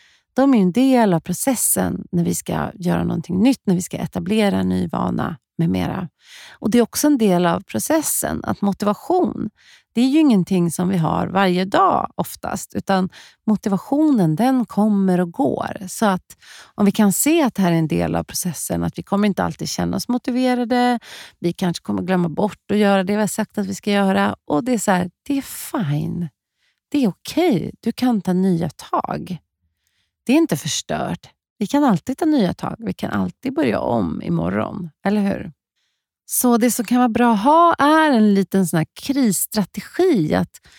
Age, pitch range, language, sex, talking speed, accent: 30-49, 180-245 Hz, Swedish, female, 195 wpm, native